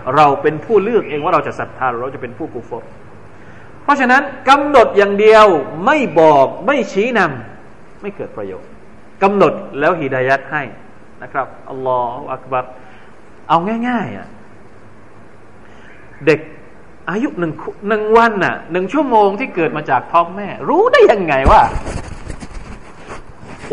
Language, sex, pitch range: Thai, male, 120-195 Hz